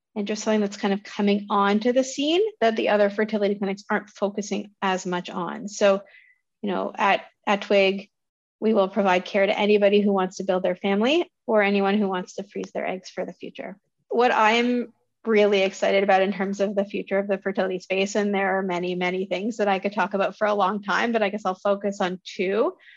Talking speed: 220 wpm